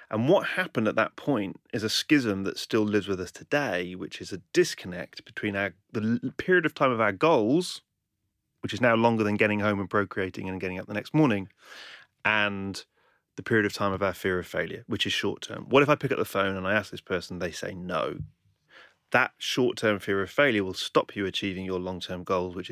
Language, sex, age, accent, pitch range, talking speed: English, male, 30-49, British, 95-115 Hz, 220 wpm